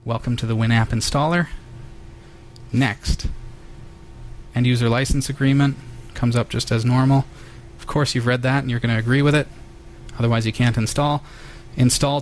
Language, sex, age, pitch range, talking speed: English, male, 30-49, 115-145 Hz, 155 wpm